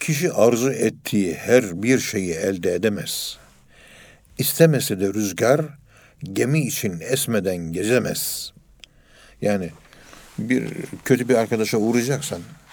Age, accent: 60-79, native